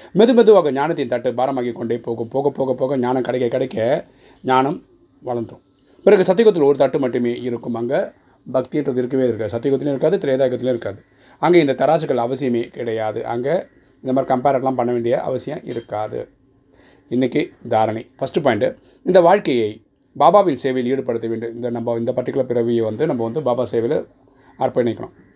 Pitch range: 120-135 Hz